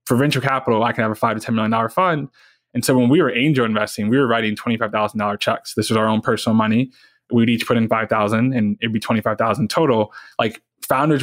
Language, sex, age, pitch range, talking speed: English, male, 20-39, 105-120 Hz, 255 wpm